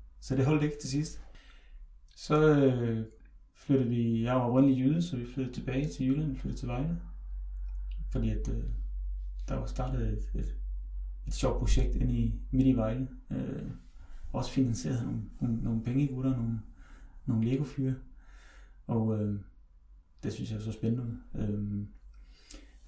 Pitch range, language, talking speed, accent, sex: 105-135 Hz, Danish, 160 wpm, native, male